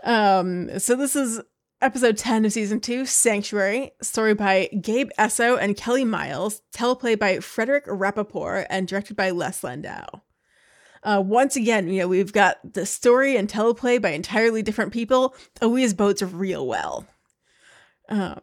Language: English